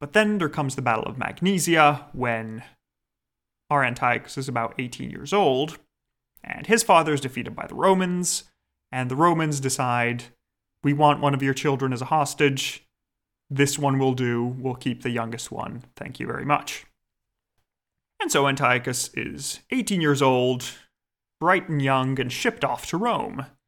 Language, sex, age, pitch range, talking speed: English, male, 30-49, 120-150 Hz, 165 wpm